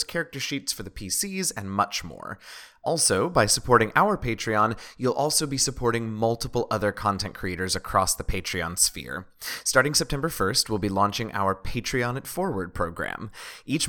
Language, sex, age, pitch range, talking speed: English, male, 20-39, 100-130 Hz, 160 wpm